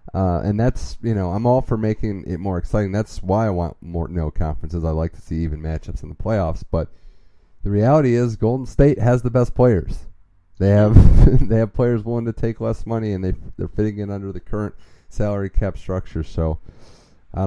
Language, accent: English, American